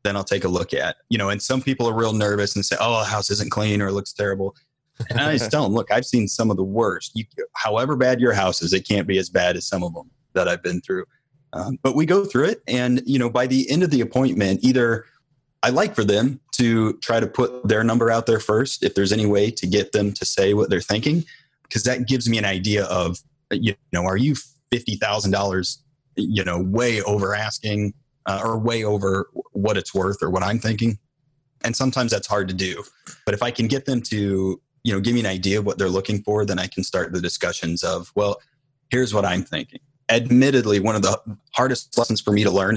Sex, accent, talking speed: male, American, 240 wpm